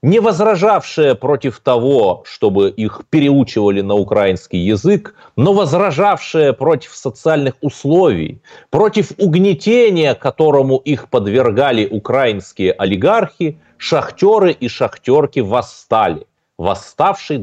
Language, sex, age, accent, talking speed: Russian, male, 30-49, native, 95 wpm